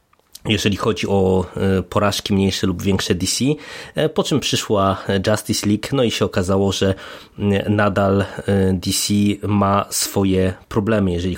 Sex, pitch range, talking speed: male, 95-115 Hz, 125 wpm